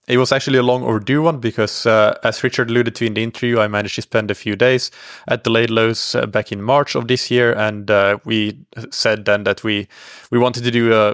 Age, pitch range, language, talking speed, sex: 20-39, 110-125 Hz, English, 245 wpm, male